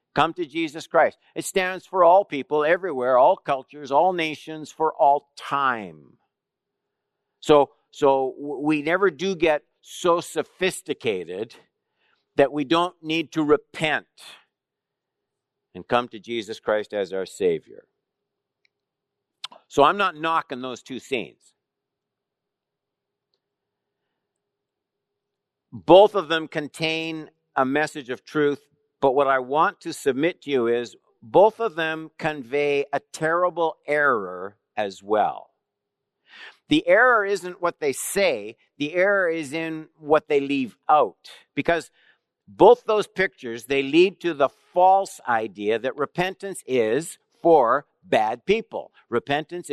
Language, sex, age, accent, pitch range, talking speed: English, male, 60-79, American, 140-185 Hz, 125 wpm